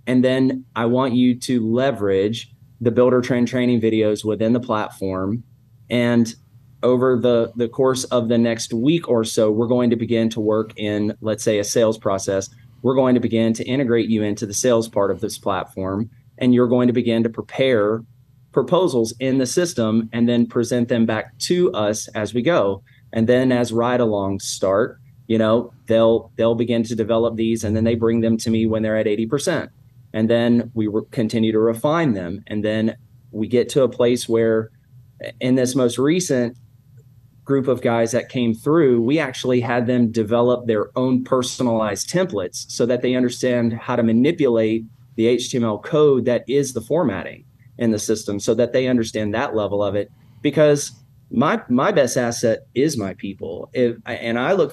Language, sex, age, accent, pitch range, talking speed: English, male, 30-49, American, 110-125 Hz, 185 wpm